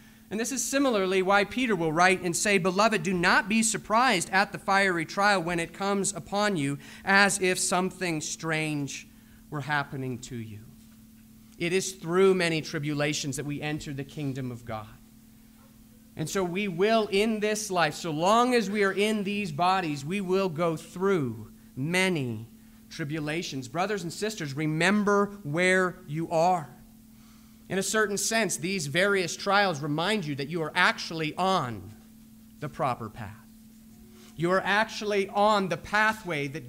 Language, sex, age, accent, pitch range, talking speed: English, male, 30-49, American, 140-200 Hz, 155 wpm